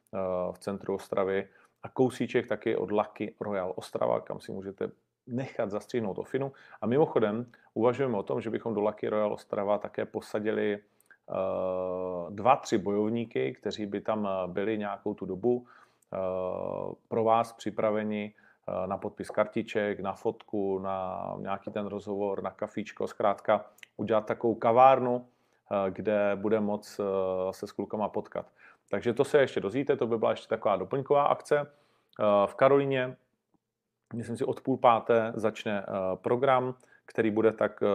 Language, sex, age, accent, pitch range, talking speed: Czech, male, 40-59, native, 100-125 Hz, 140 wpm